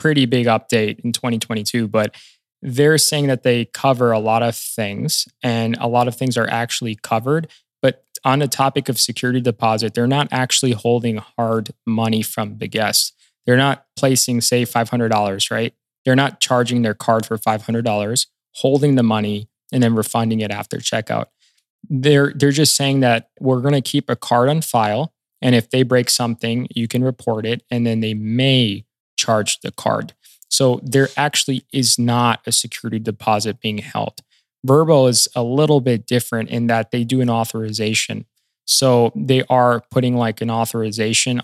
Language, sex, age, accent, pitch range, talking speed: English, male, 20-39, American, 115-130 Hz, 170 wpm